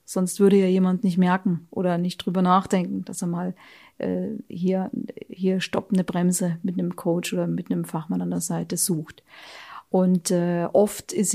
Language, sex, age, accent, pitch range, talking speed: German, female, 40-59, German, 180-210 Hz, 175 wpm